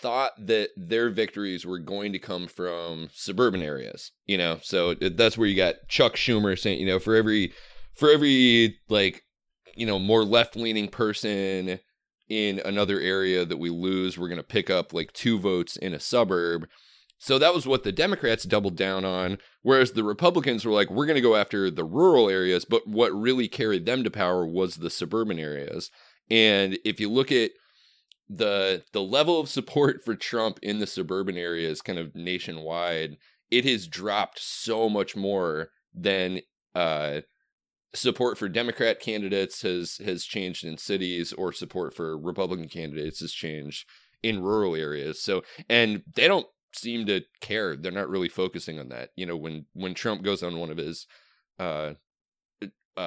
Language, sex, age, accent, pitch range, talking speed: English, male, 30-49, American, 85-110 Hz, 175 wpm